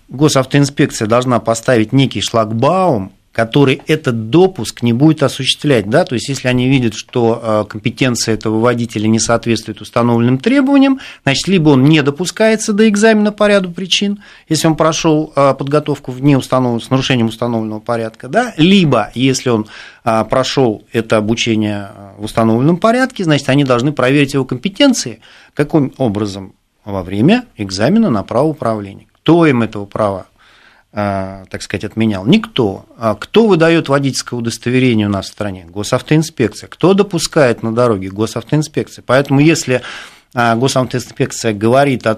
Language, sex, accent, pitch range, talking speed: Russian, male, native, 110-150 Hz, 135 wpm